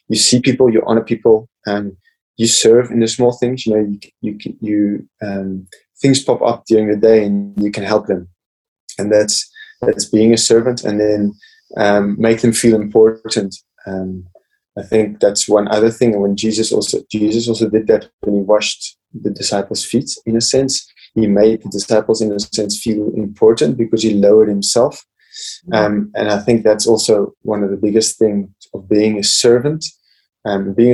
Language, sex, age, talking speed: English, male, 20-39, 190 wpm